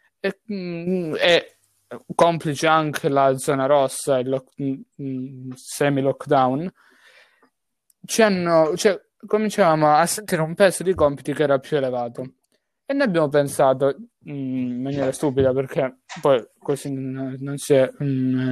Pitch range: 135-175 Hz